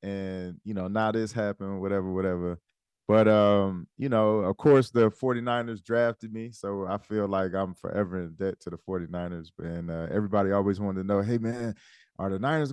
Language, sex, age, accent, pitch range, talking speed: English, male, 30-49, American, 95-130 Hz, 195 wpm